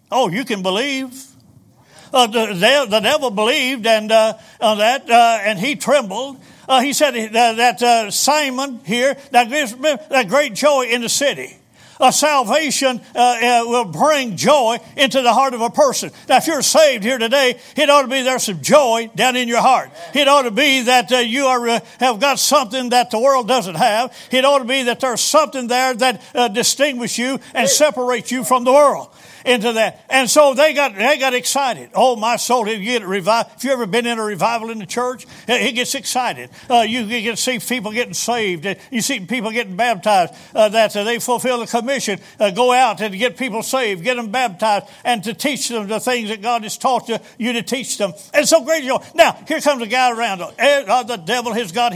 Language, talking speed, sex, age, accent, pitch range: English, 210 wpm, male, 60-79, American, 225-270 Hz